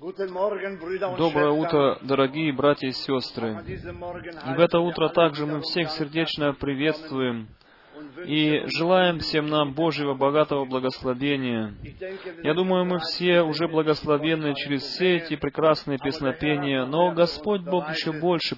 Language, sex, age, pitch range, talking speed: Romanian, male, 20-39, 140-170 Hz, 125 wpm